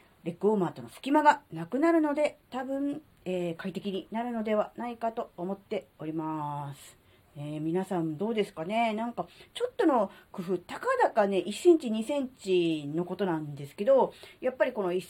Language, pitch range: Japanese, 160-235 Hz